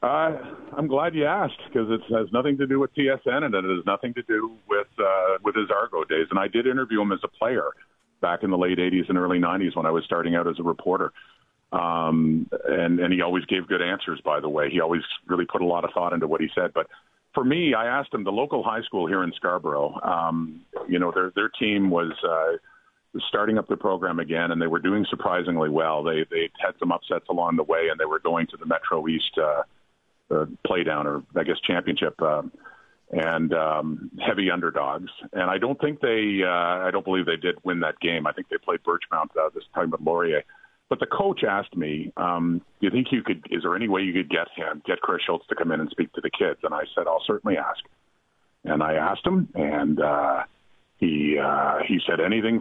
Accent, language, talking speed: American, English, 230 wpm